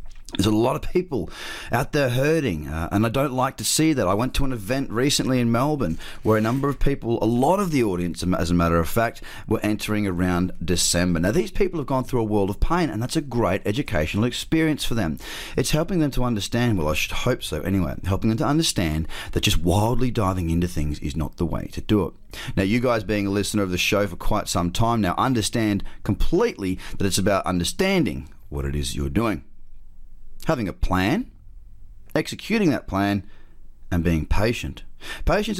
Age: 30-49